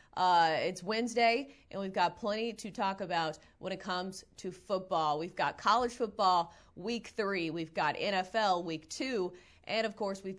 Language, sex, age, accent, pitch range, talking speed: English, female, 30-49, American, 175-210 Hz, 175 wpm